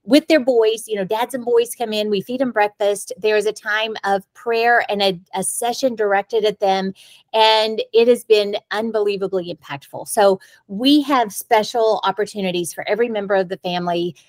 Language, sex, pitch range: English, female, 195-235 Hz